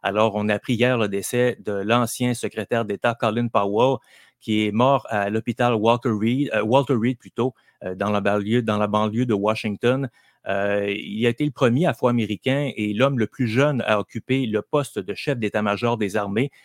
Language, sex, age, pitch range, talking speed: French, male, 30-49, 105-120 Hz, 195 wpm